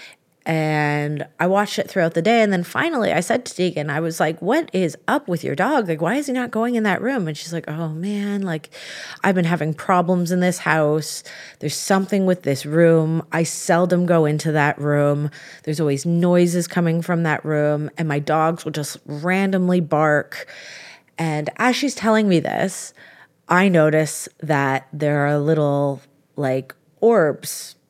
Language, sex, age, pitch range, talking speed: English, female, 30-49, 150-185 Hz, 180 wpm